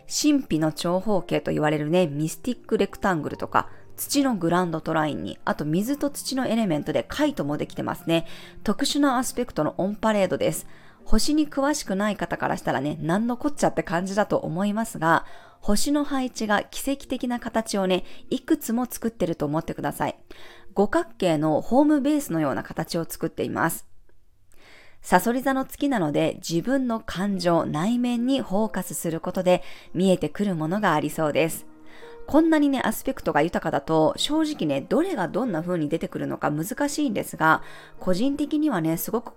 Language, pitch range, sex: Japanese, 165-265 Hz, female